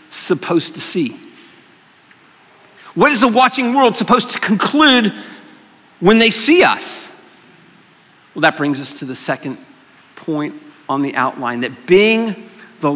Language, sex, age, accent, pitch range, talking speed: English, male, 50-69, American, 165-250 Hz, 135 wpm